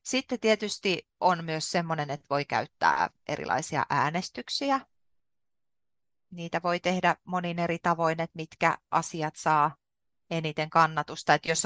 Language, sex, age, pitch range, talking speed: Finnish, female, 30-49, 150-175 Hz, 125 wpm